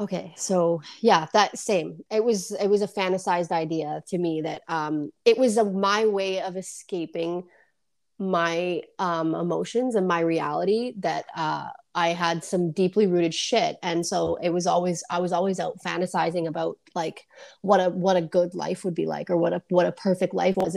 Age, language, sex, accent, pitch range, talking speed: 30-49, English, female, American, 175-225 Hz, 190 wpm